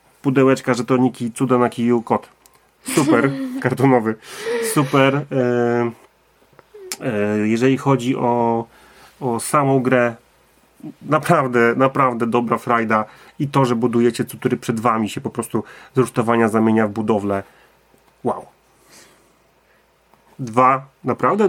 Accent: native